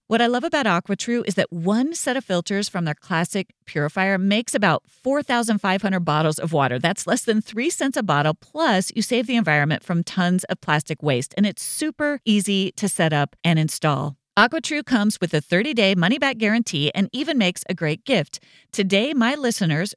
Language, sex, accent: English, female, American